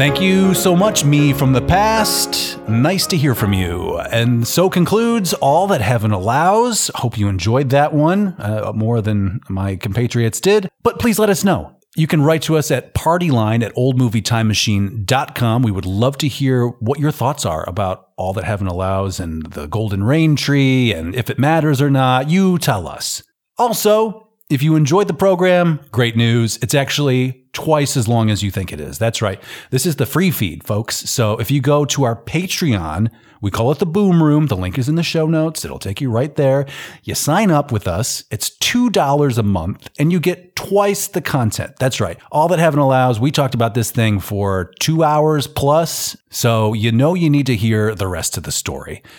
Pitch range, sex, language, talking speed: 105-155 Hz, male, English, 205 wpm